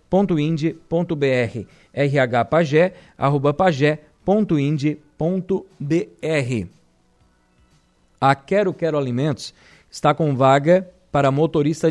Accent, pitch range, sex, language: Brazilian, 140-175 Hz, male, Portuguese